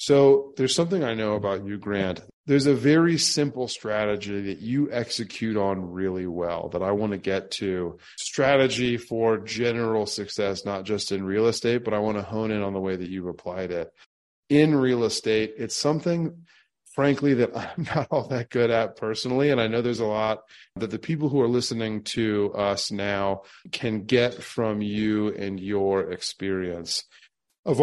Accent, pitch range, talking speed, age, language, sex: American, 105-130 Hz, 180 wpm, 30-49, English, male